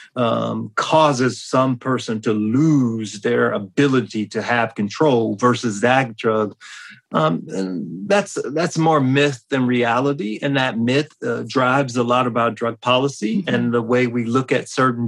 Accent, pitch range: American, 115-145 Hz